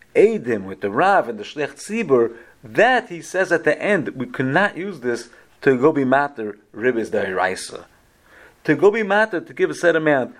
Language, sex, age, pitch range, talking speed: English, male, 40-59, 125-175 Hz, 195 wpm